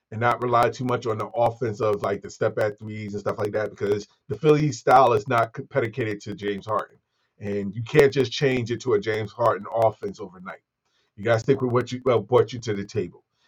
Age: 30-49